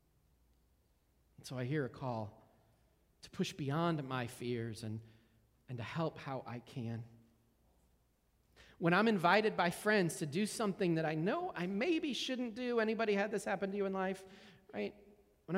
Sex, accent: male, American